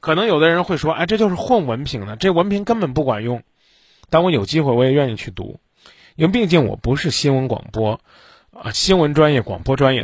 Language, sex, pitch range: Chinese, male, 125-180 Hz